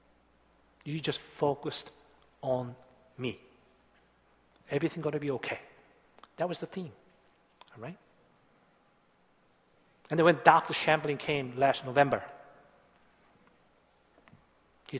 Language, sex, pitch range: Korean, male, 145-210 Hz